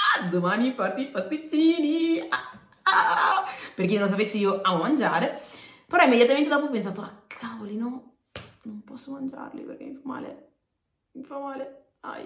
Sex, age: female, 30-49